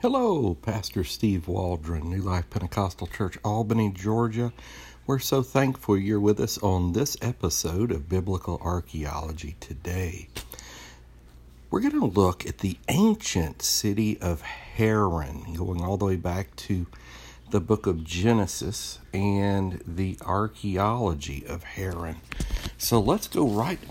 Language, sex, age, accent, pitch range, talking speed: English, male, 60-79, American, 85-105 Hz, 130 wpm